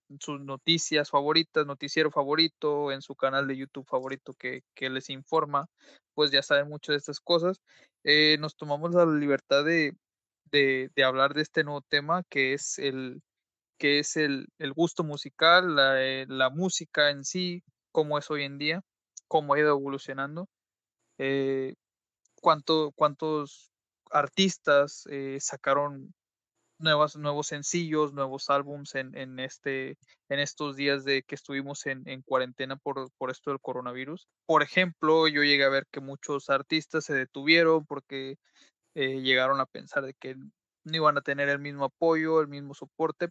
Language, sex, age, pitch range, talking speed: Spanish, male, 20-39, 135-155 Hz, 160 wpm